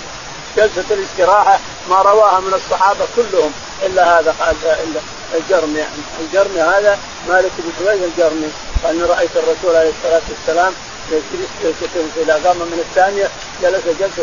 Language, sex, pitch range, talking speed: Arabic, male, 180-235 Hz, 120 wpm